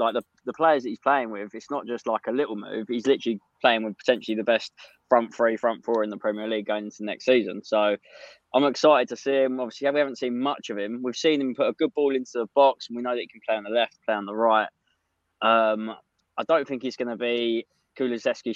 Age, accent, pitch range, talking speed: 20-39, British, 110-135 Hz, 265 wpm